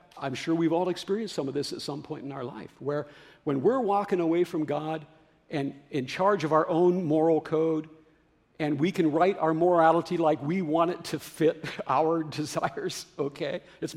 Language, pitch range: English, 150-185 Hz